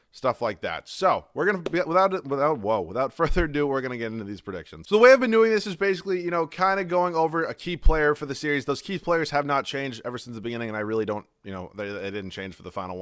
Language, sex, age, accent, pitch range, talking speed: English, male, 30-49, American, 105-150 Hz, 290 wpm